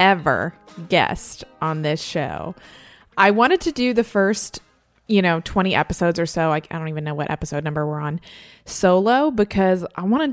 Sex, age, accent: female, 20-39, American